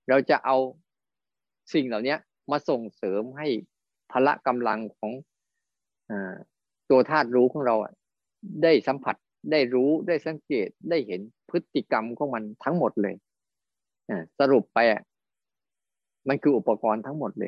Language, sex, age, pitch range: Thai, male, 20-39, 115-150 Hz